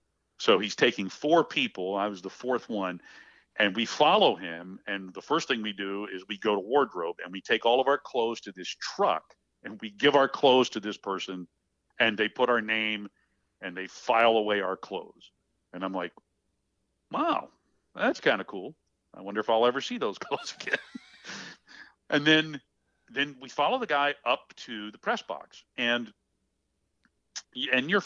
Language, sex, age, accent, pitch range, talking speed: English, male, 50-69, American, 95-115 Hz, 185 wpm